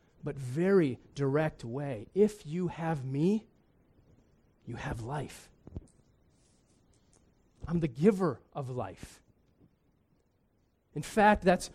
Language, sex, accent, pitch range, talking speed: English, male, American, 140-195 Hz, 95 wpm